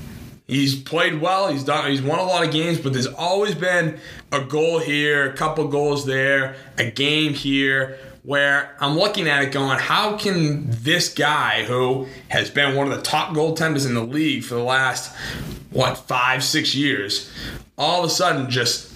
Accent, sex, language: American, male, English